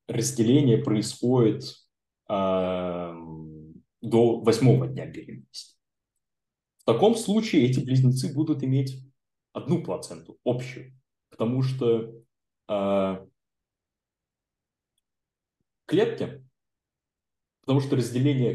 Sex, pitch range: male, 100-135 Hz